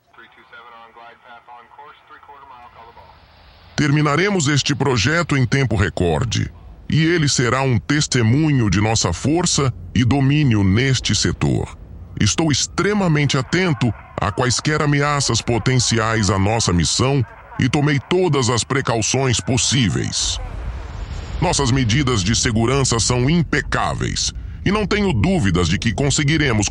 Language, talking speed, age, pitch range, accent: Portuguese, 105 wpm, 10-29, 105-150 Hz, Brazilian